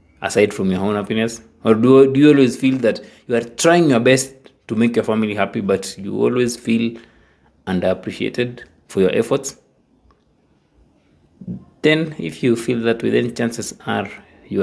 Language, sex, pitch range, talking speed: English, male, 105-130 Hz, 160 wpm